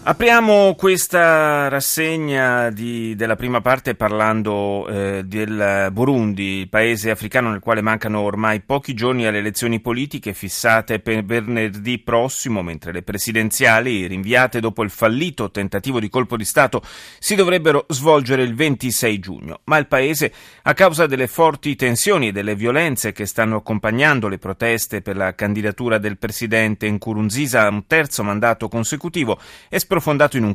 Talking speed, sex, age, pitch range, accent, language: 145 wpm, male, 30-49, 105-135 Hz, native, Italian